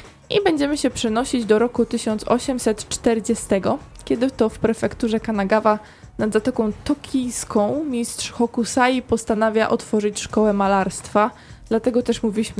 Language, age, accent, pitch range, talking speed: Polish, 20-39, native, 205-240 Hz, 115 wpm